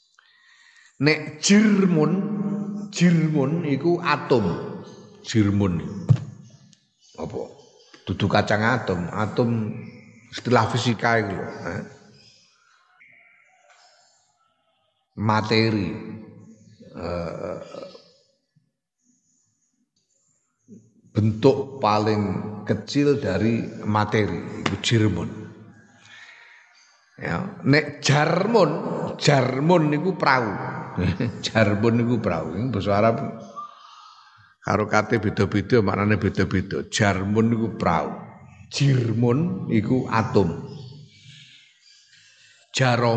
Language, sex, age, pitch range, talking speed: Indonesian, male, 50-69, 110-150 Hz, 65 wpm